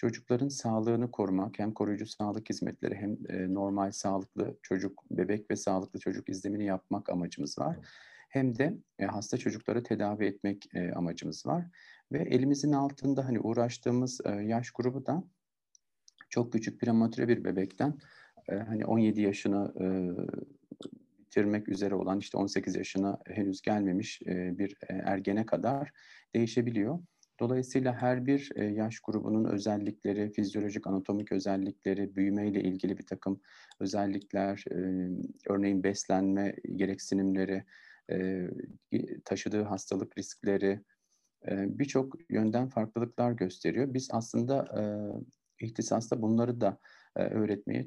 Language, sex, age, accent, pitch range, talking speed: Turkish, male, 50-69, native, 100-120 Hz, 110 wpm